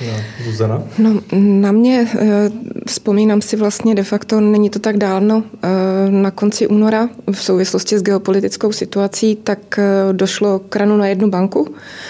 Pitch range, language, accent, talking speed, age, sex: 195-215 Hz, Czech, native, 130 wpm, 20-39, female